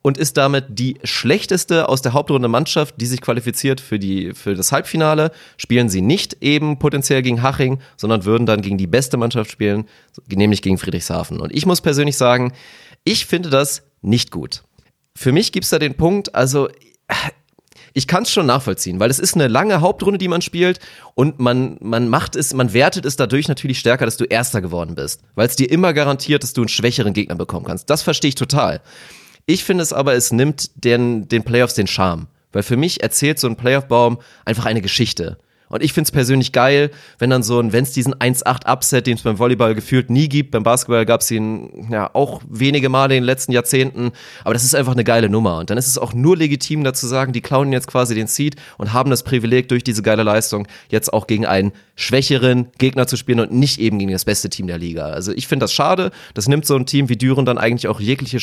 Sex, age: male, 30-49